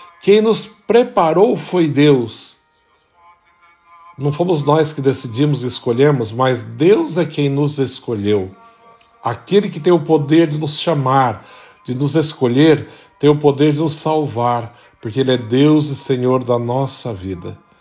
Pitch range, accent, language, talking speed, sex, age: 130-170 Hz, Brazilian, Portuguese, 150 wpm, male, 50-69